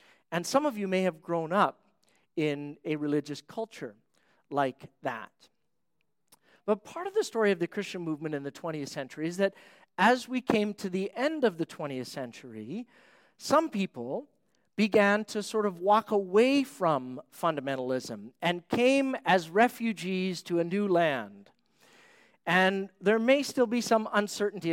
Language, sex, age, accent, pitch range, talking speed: English, male, 40-59, American, 155-215 Hz, 155 wpm